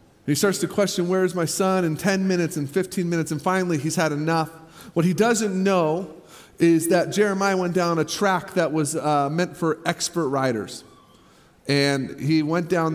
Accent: American